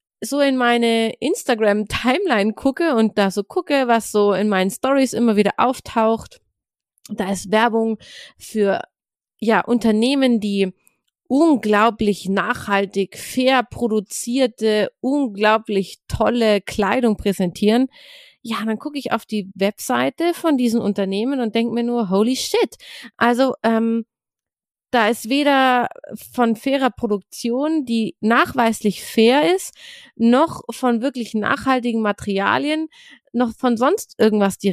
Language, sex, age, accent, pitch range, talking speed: German, female, 30-49, German, 215-265 Hz, 120 wpm